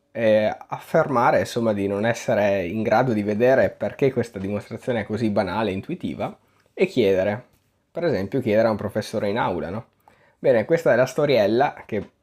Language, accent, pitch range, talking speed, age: Italian, native, 100-120 Hz, 170 wpm, 20-39